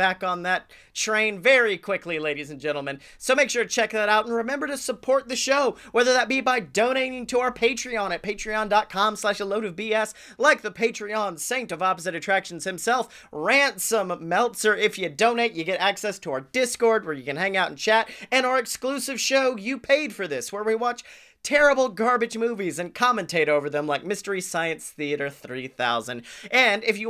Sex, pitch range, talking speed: male, 170-235 Hz, 195 wpm